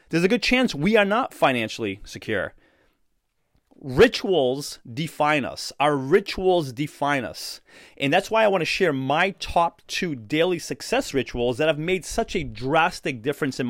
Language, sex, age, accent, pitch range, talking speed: English, male, 30-49, American, 135-180 Hz, 160 wpm